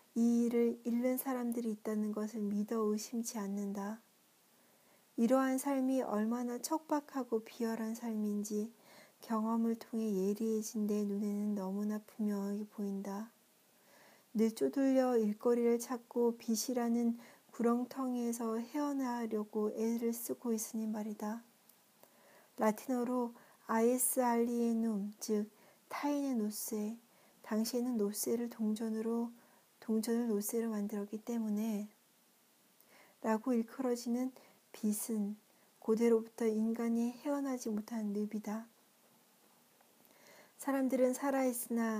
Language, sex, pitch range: Korean, female, 215-240 Hz